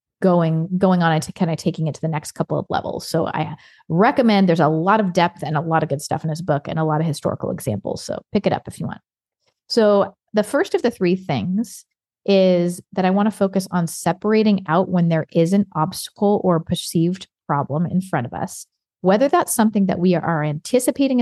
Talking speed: 225 wpm